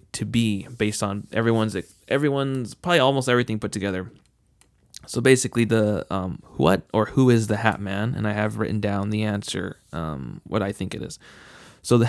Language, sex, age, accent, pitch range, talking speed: English, male, 20-39, American, 105-120 Hz, 185 wpm